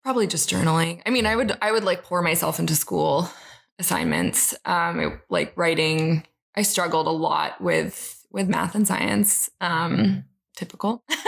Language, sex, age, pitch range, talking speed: English, female, 20-39, 165-205 Hz, 160 wpm